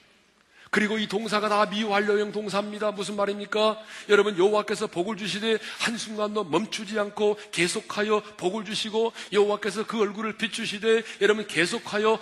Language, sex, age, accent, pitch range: Korean, male, 40-59, native, 195-215 Hz